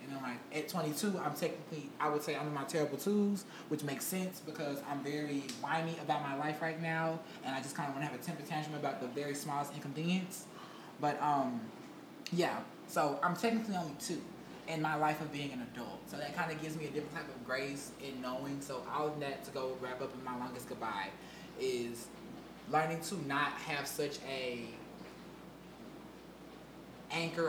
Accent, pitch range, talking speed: American, 145-180 Hz, 200 wpm